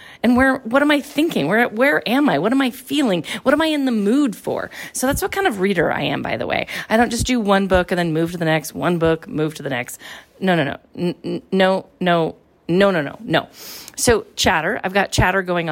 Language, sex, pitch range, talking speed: English, female, 185-265 Hz, 250 wpm